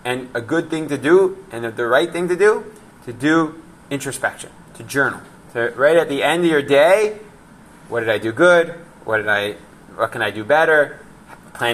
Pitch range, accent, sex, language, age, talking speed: 120-170 Hz, American, male, English, 20-39, 200 wpm